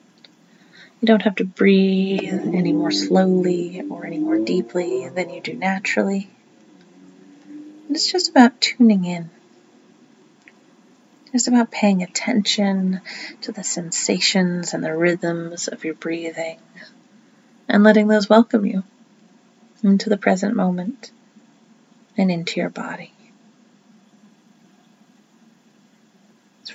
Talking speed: 110 wpm